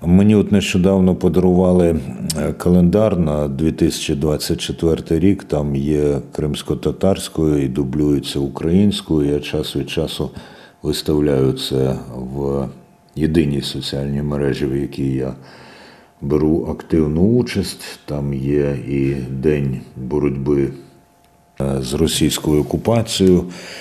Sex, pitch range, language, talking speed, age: male, 70-85 Hz, Ukrainian, 95 wpm, 50-69